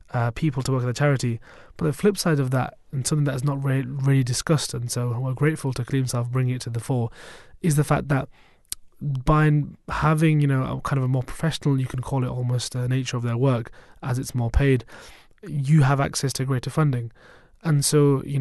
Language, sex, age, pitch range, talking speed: English, male, 20-39, 125-145 Hz, 230 wpm